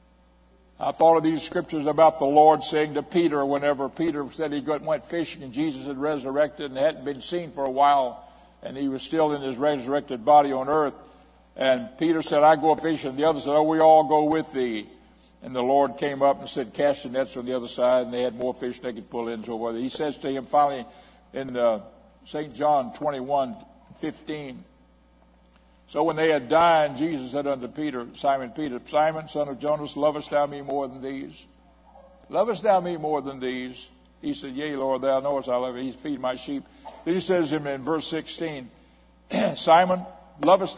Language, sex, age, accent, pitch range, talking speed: English, male, 60-79, American, 135-175 Hz, 200 wpm